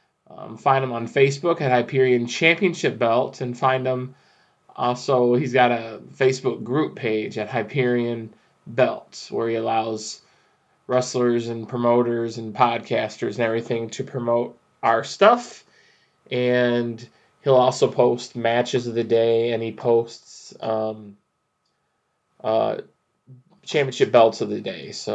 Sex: male